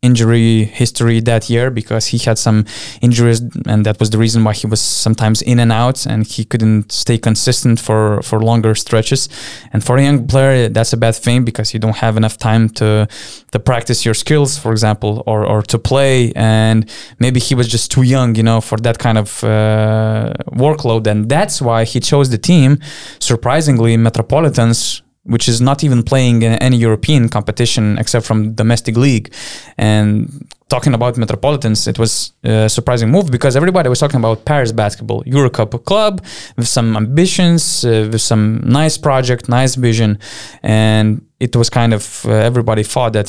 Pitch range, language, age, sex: 110-130 Hz, English, 20-39, male